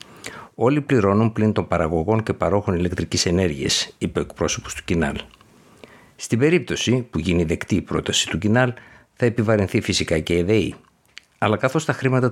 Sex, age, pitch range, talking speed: male, 60-79, 90-110 Hz, 160 wpm